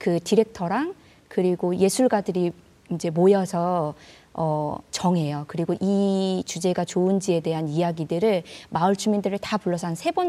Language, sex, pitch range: Korean, female, 175-235 Hz